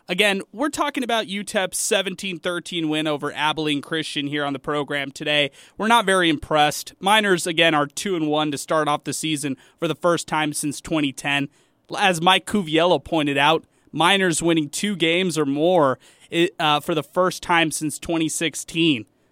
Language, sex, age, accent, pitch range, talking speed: English, male, 20-39, American, 155-200 Hz, 170 wpm